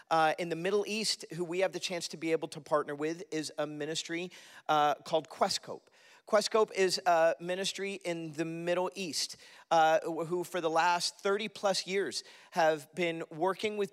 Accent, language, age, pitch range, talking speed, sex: American, English, 40-59, 155-185 Hz, 180 wpm, male